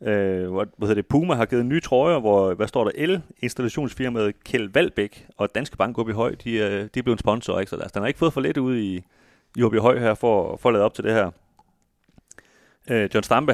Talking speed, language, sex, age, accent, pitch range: 240 wpm, Danish, male, 30-49, native, 95-115 Hz